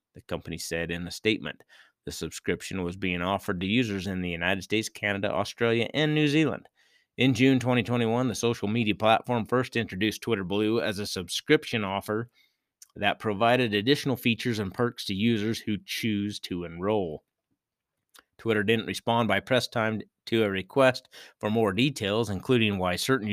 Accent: American